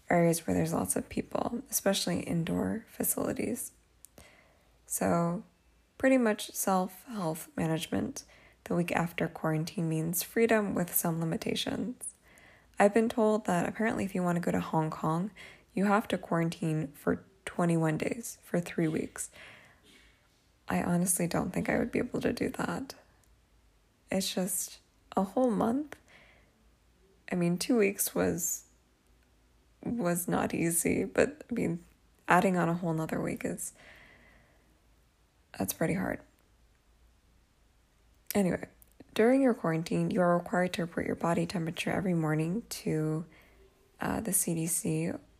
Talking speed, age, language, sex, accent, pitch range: 135 wpm, 10-29, English, female, American, 160-215 Hz